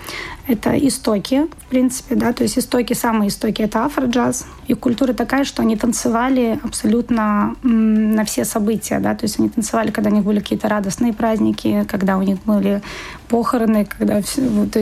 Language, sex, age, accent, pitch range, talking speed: Russian, female, 20-39, native, 215-245 Hz, 165 wpm